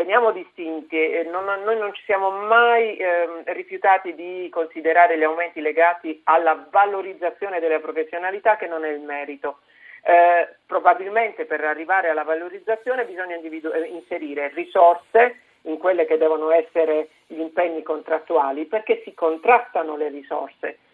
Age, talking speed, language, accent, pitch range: 50-69, 140 wpm, Italian, native, 160-220 Hz